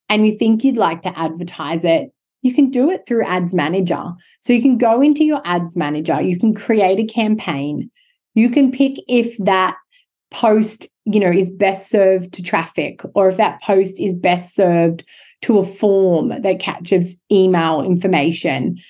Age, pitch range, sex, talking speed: 30-49, 180-235 Hz, female, 175 wpm